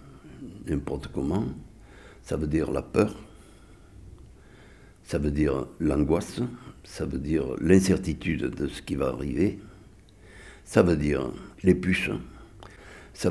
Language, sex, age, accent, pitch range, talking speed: French, male, 60-79, French, 80-95 Hz, 115 wpm